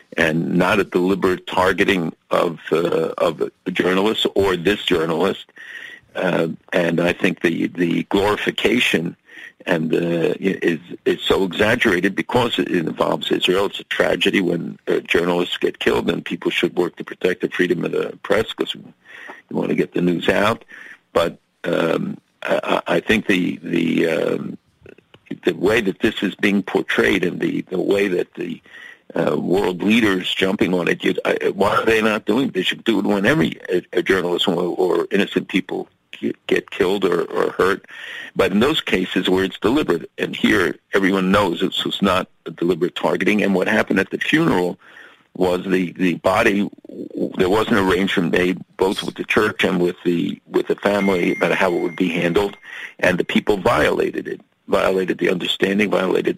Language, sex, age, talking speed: English, male, 60-79, 180 wpm